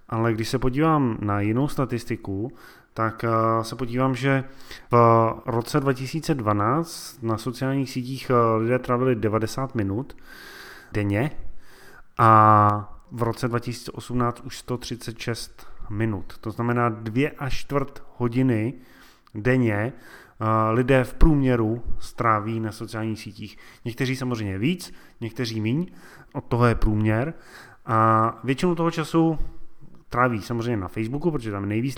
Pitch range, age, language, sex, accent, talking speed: 110-135 Hz, 30-49, Czech, male, native, 120 wpm